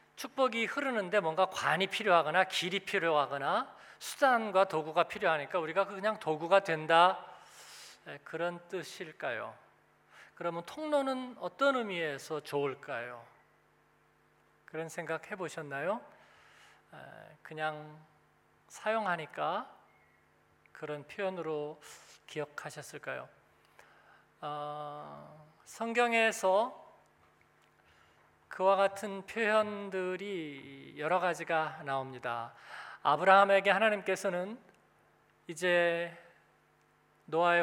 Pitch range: 160-205 Hz